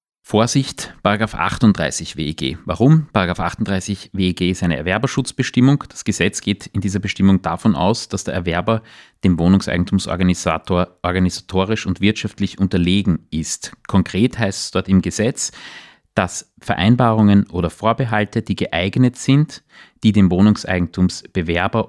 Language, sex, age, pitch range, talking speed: German, male, 30-49, 90-115 Hz, 120 wpm